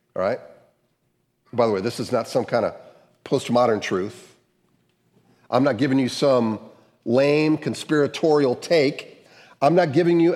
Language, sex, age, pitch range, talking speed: English, male, 50-69, 140-175 Hz, 145 wpm